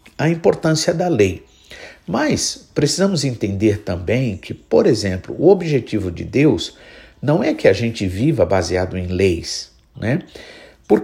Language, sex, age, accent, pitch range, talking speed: Portuguese, male, 50-69, Brazilian, 110-165 Hz, 140 wpm